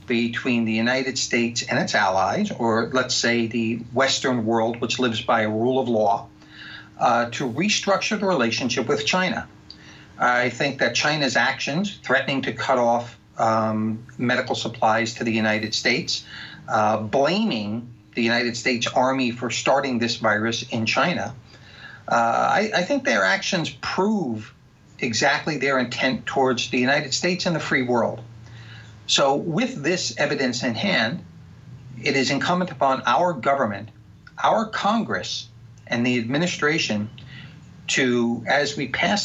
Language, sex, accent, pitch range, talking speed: English, male, American, 115-145 Hz, 145 wpm